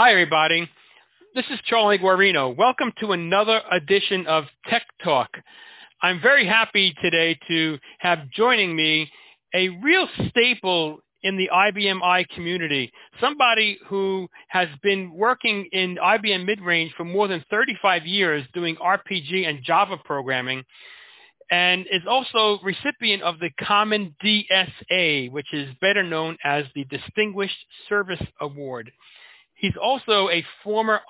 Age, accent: 40-59, American